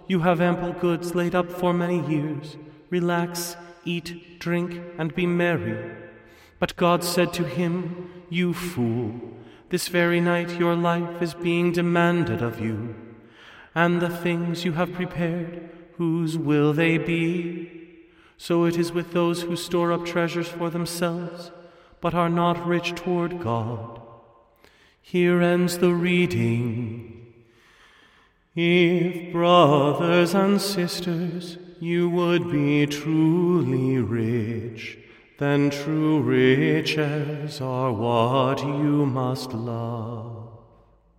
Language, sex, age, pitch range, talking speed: English, male, 30-49, 150-175 Hz, 115 wpm